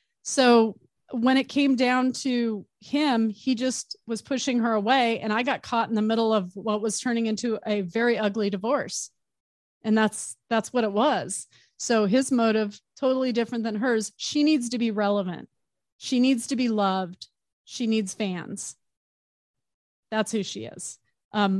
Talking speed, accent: 165 wpm, American